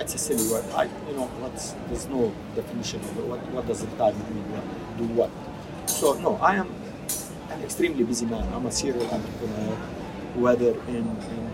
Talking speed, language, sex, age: 175 wpm, English, male, 50-69